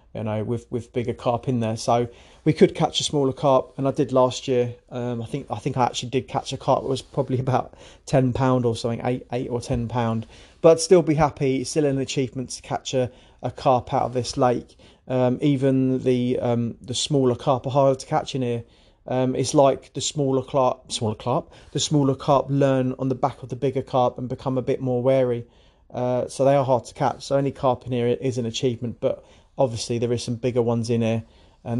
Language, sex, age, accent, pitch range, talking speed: English, male, 30-49, British, 120-140 Hz, 235 wpm